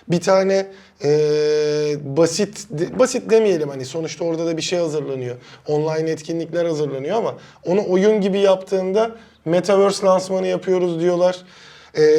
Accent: native